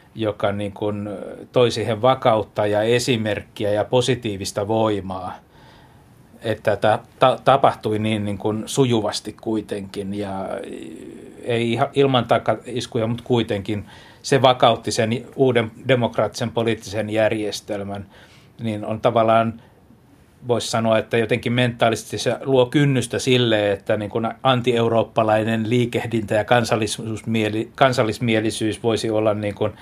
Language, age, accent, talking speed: Finnish, 60-79, native, 105 wpm